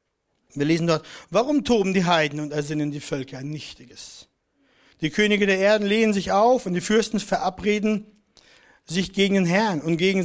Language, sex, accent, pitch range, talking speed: German, male, German, 160-215 Hz, 175 wpm